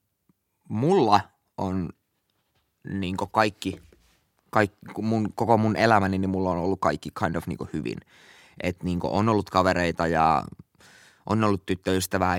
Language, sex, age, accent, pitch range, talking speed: Finnish, male, 20-39, native, 95-105 Hz, 135 wpm